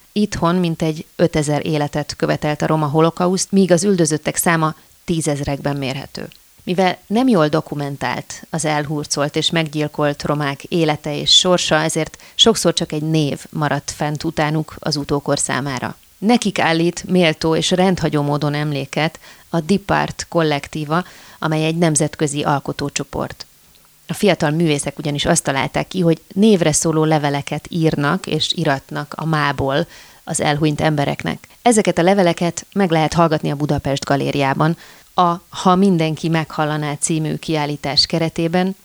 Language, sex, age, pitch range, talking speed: Hungarian, female, 30-49, 145-175 Hz, 135 wpm